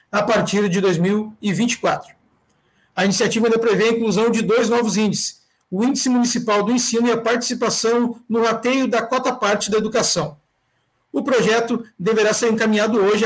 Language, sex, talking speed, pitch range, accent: Portuguese, male, 155 wpm, 190-235 Hz, Brazilian